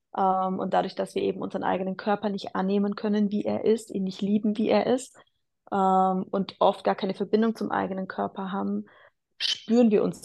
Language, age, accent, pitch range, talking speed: German, 20-39, German, 185-215 Hz, 185 wpm